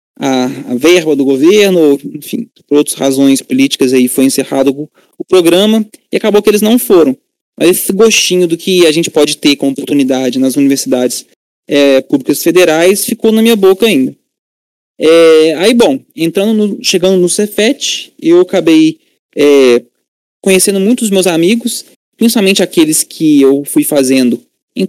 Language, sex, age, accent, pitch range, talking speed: Portuguese, male, 20-39, Brazilian, 140-210 Hz, 150 wpm